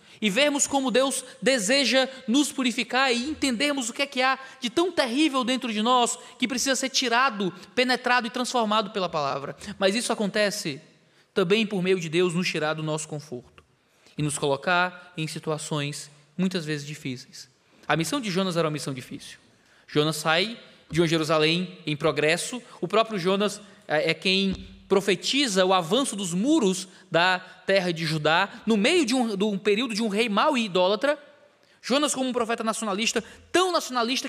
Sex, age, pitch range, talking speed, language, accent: male, 20-39, 185-265 Hz, 170 wpm, Portuguese, Brazilian